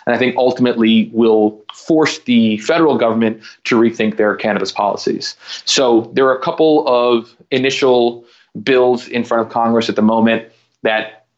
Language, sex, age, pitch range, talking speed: English, male, 30-49, 105-125 Hz, 160 wpm